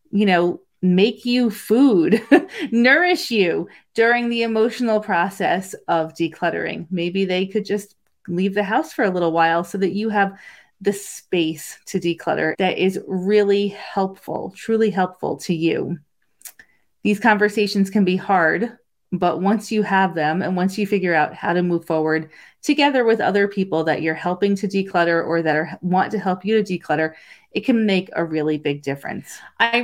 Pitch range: 175-220 Hz